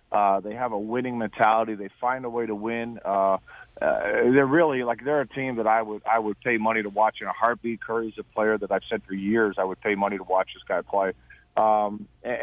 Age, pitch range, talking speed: 40-59, 110-135 Hz, 245 wpm